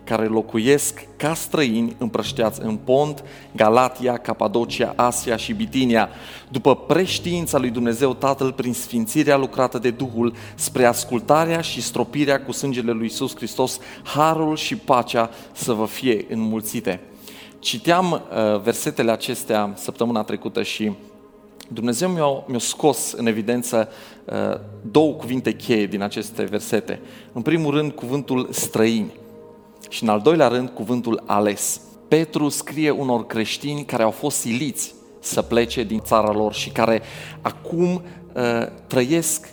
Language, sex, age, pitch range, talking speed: Romanian, male, 40-59, 115-150 Hz, 130 wpm